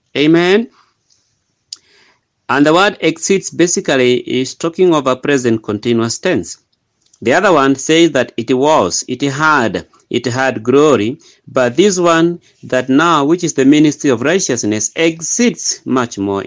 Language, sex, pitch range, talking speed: English, male, 135-190 Hz, 140 wpm